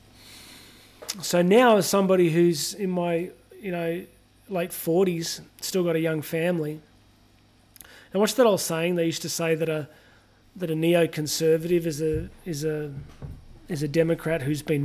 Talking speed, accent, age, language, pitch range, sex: 160 wpm, Australian, 30-49, English, 155-175 Hz, male